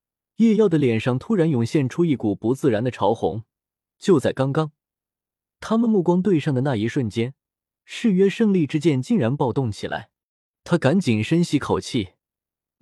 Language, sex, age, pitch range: Chinese, male, 20-39, 110-165 Hz